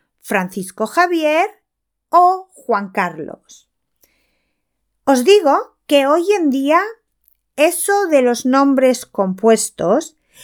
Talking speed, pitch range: 90 wpm, 215-310 Hz